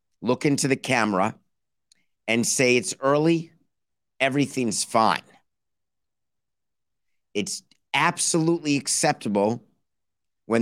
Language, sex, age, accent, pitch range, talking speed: English, male, 50-69, American, 110-135 Hz, 80 wpm